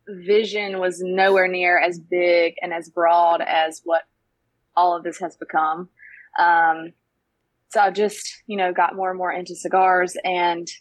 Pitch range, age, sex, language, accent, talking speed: 175-205 Hz, 20-39, female, English, American, 160 wpm